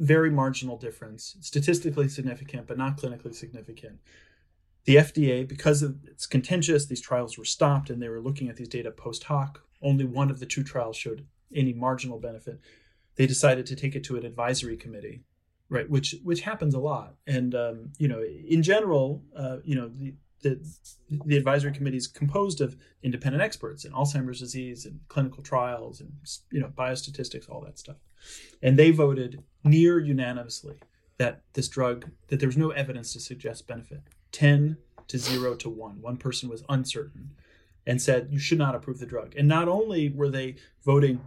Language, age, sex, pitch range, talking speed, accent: English, 30-49, male, 125-145 Hz, 180 wpm, American